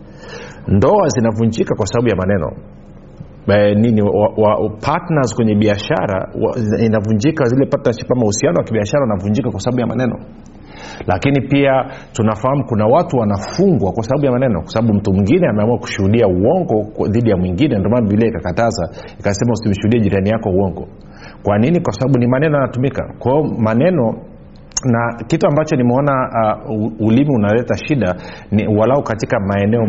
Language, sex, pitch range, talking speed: Swahili, male, 100-125 Hz, 145 wpm